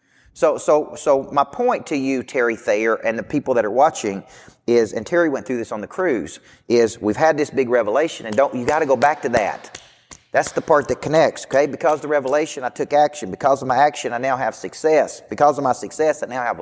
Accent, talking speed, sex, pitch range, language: American, 240 wpm, male, 110-145 Hz, English